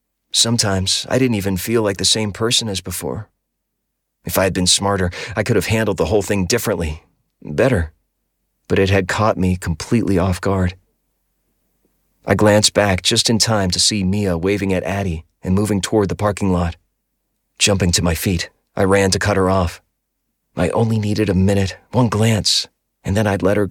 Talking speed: 185 wpm